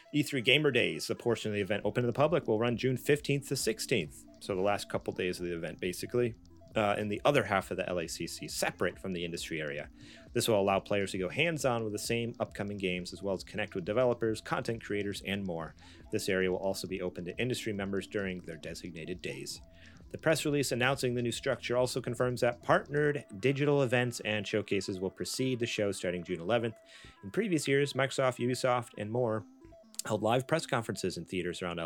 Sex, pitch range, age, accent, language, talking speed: male, 95-125 Hz, 30-49, American, English, 210 wpm